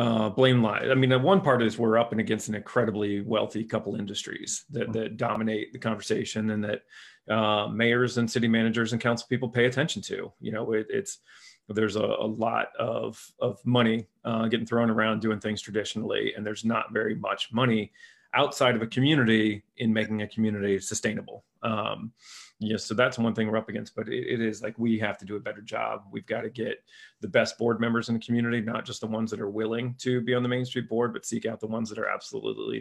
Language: English